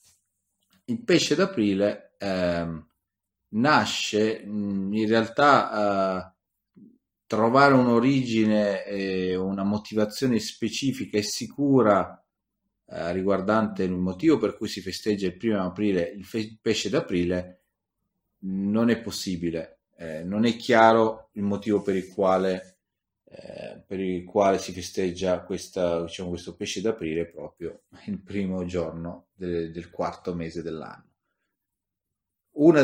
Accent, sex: native, male